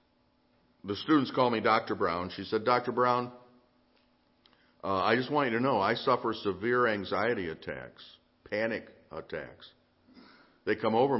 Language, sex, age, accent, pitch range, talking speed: English, male, 50-69, American, 100-125 Hz, 145 wpm